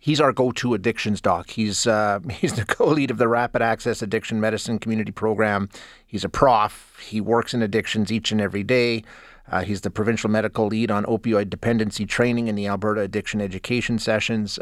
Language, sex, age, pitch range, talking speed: English, male, 30-49, 105-120 Hz, 185 wpm